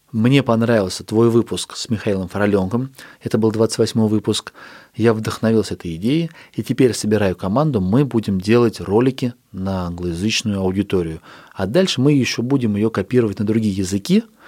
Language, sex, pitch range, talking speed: Russian, male, 95-120 Hz, 150 wpm